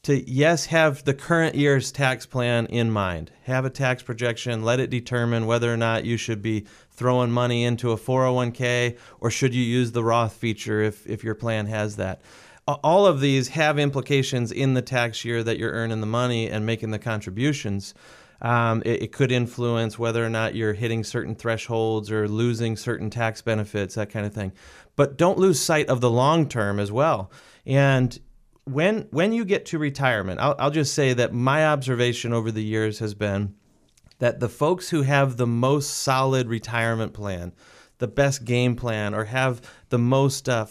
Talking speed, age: 185 wpm, 30-49